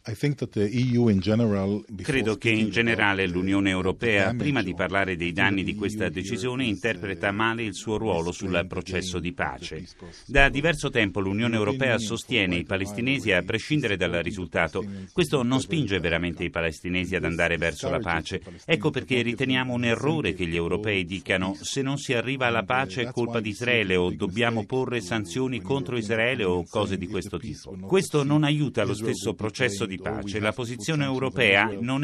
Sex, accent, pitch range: male, native, 95-130 Hz